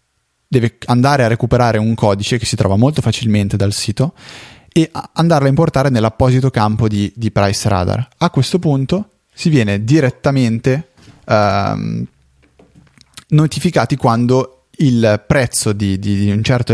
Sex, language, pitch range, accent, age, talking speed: male, Italian, 110-140 Hz, native, 20-39, 140 wpm